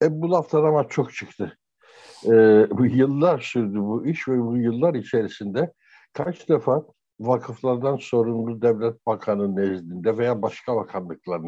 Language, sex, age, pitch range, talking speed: Turkish, male, 60-79, 110-150 Hz, 135 wpm